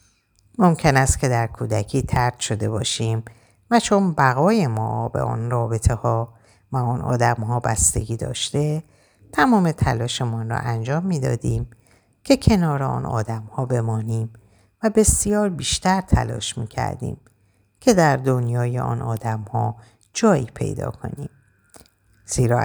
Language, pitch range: Persian, 110-135 Hz